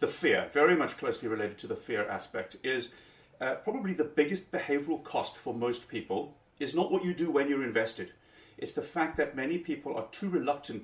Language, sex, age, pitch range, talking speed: English, male, 40-59, 115-165 Hz, 205 wpm